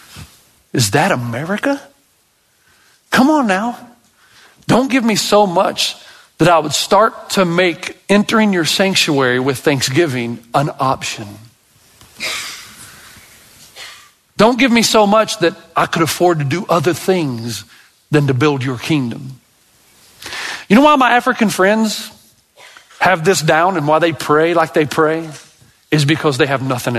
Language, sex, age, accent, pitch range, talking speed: English, male, 50-69, American, 125-190 Hz, 140 wpm